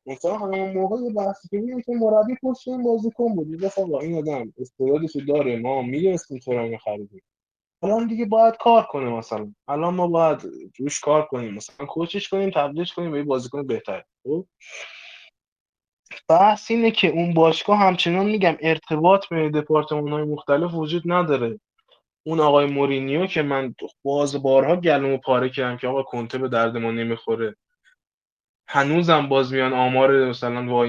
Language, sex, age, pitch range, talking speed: Persian, male, 20-39, 120-175 Hz, 155 wpm